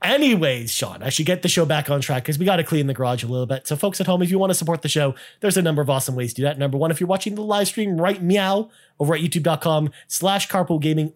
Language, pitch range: English, 145-195 Hz